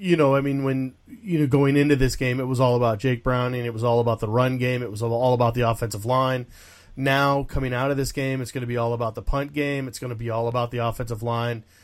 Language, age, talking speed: English, 30-49, 280 wpm